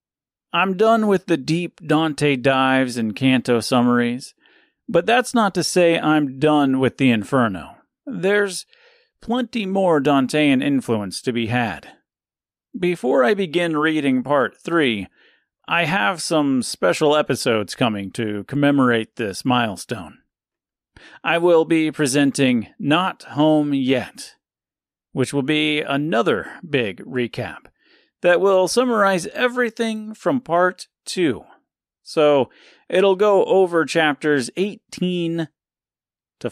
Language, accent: English, American